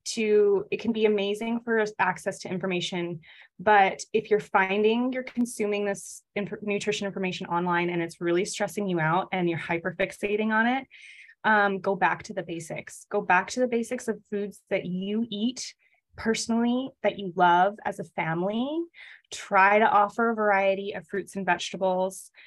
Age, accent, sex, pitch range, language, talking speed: 20-39, American, female, 190-225 Hz, English, 170 wpm